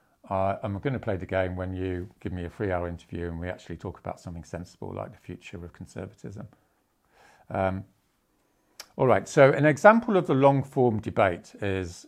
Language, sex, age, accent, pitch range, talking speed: English, male, 50-69, British, 90-115 Hz, 185 wpm